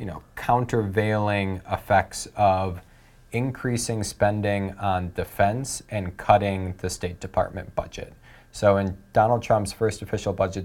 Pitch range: 95-115 Hz